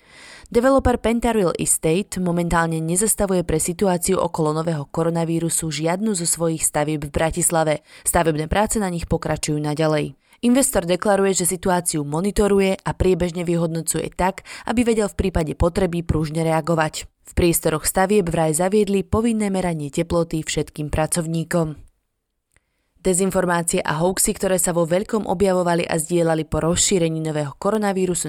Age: 20-39